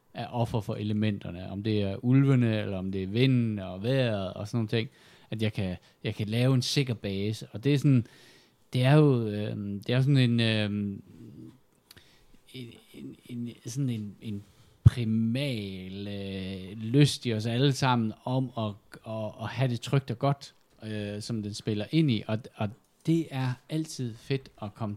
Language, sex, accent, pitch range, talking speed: Danish, male, native, 100-125 Hz, 185 wpm